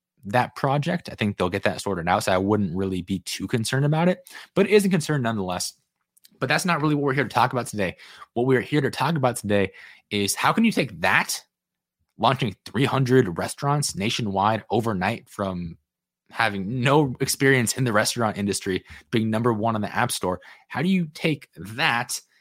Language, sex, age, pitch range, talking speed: English, male, 20-39, 100-135 Hz, 195 wpm